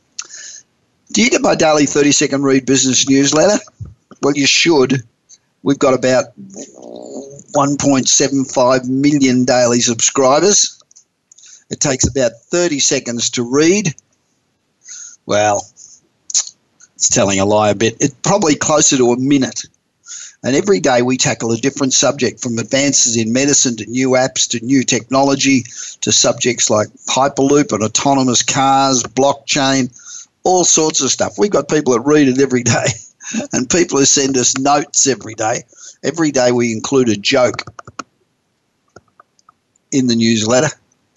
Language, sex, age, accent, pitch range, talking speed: English, male, 50-69, Australian, 120-145 Hz, 135 wpm